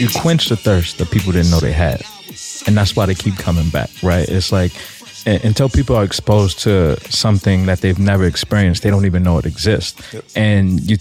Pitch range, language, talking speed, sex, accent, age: 95-115 Hz, English, 205 wpm, male, American, 20-39